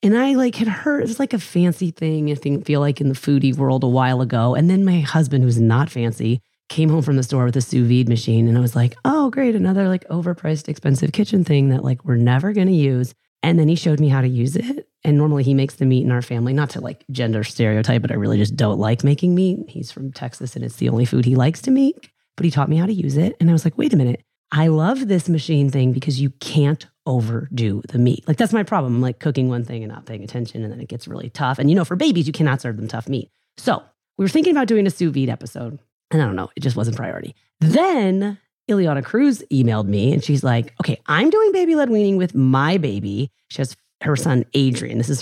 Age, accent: 30-49, American